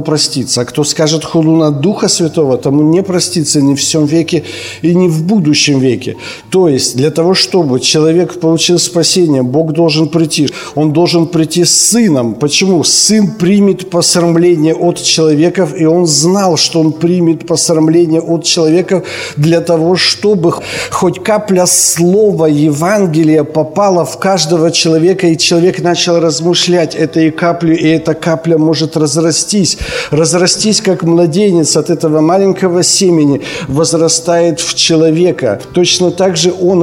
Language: Ukrainian